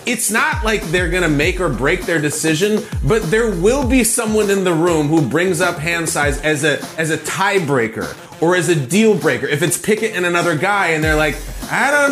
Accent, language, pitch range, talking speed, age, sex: American, English, 155-205 Hz, 220 wpm, 30-49, male